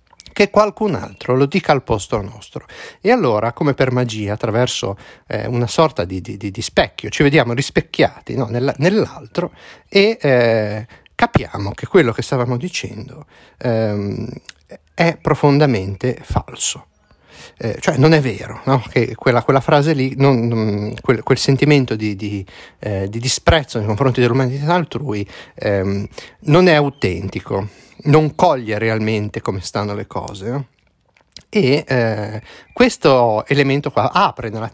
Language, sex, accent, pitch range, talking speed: Italian, male, native, 110-145 Hz, 130 wpm